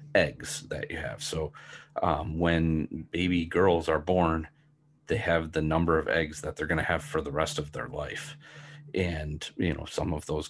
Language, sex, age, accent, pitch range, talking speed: English, male, 40-59, American, 80-95 Hz, 195 wpm